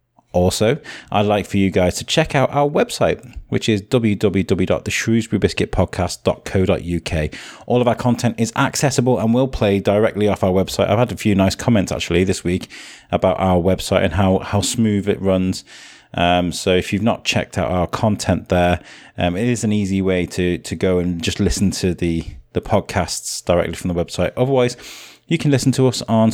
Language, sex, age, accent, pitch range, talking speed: English, male, 30-49, British, 90-115 Hz, 185 wpm